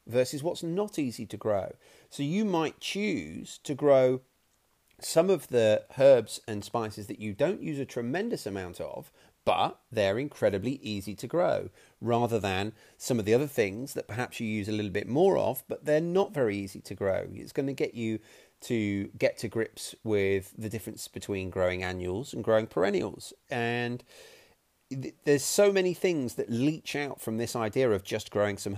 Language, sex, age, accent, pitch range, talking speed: English, male, 30-49, British, 105-145 Hz, 185 wpm